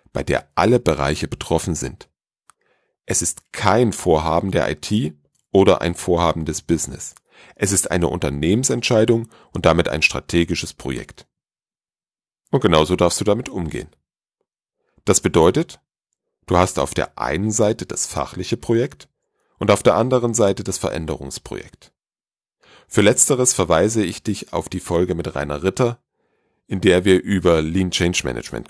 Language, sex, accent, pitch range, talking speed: German, male, German, 80-105 Hz, 140 wpm